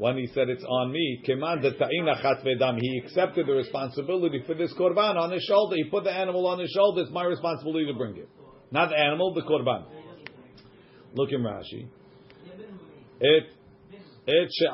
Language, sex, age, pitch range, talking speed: English, male, 50-69, 130-170 Hz, 155 wpm